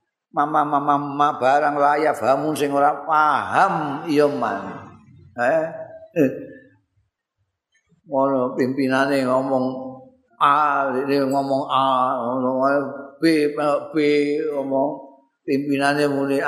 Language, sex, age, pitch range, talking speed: Indonesian, male, 50-69, 120-150 Hz, 75 wpm